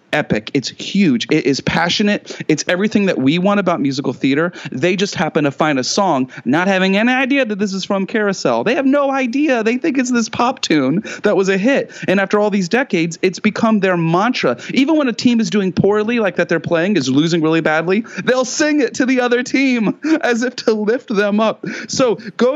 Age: 30-49